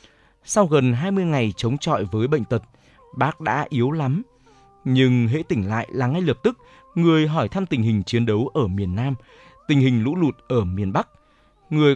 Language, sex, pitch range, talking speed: Vietnamese, male, 110-150 Hz, 200 wpm